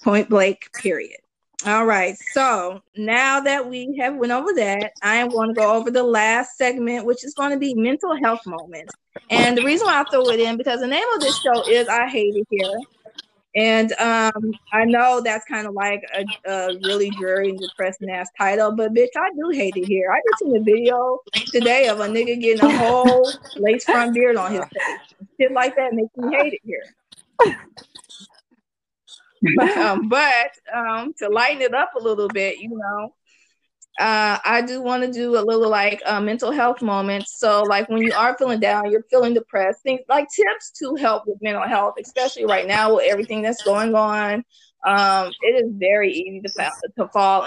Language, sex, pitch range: English, female, 205-255 Hz